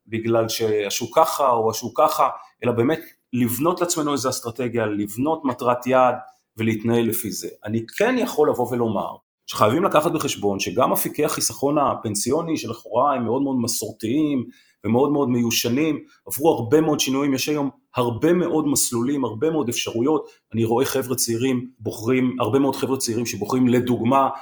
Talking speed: 150 wpm